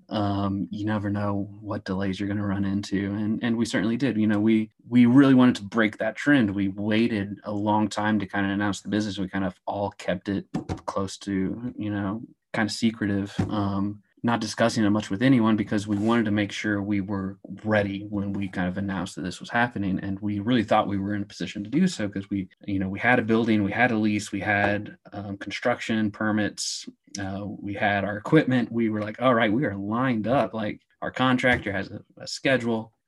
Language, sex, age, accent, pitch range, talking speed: English, male, 30-49, American, 100-110 Hz, 225 wpm